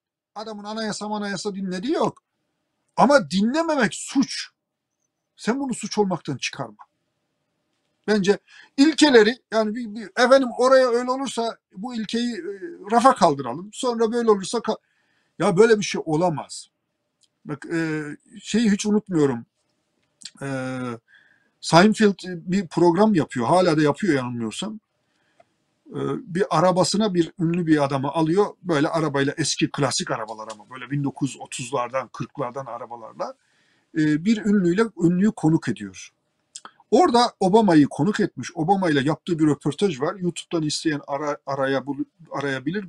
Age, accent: 50-69, native